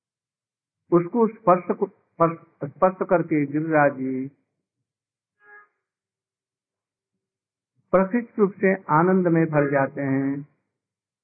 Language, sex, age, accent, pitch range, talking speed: Hindi, male, 50-69, native, 140-190 Hz, 70 wpm